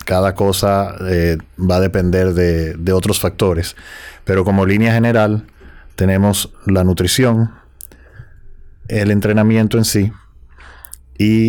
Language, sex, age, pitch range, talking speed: Spanish, male, 30-49, 90-105 Hz, 115 wpm